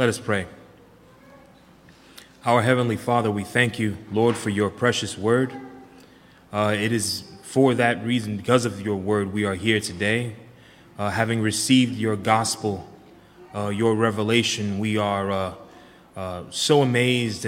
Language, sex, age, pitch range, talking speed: English, male, 20-39, 105-120 Hz, 145 wpm